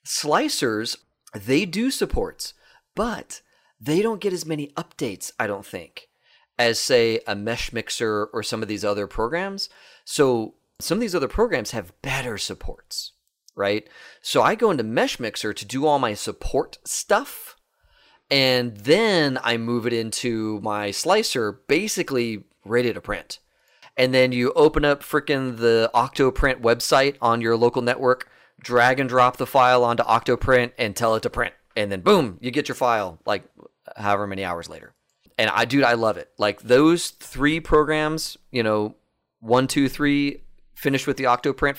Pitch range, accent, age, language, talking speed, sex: 110-140 Hz, American, 30-49, English, 165 wpm, male